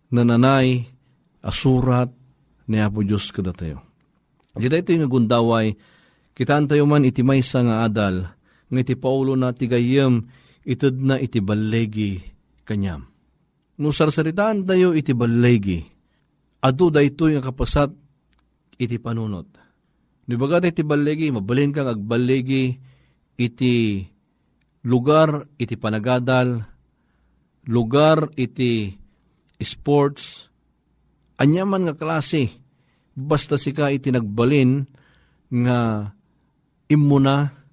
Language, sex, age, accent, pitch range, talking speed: Filipino, male, 40-59, native, 115-145 Hz, 95 wpm